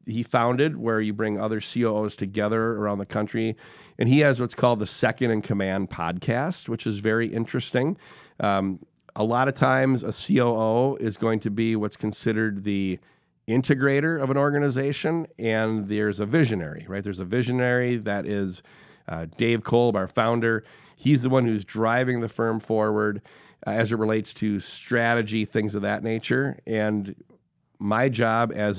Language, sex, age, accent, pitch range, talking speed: English, male, 40-59, American, 105-125 Hz, 165 wpm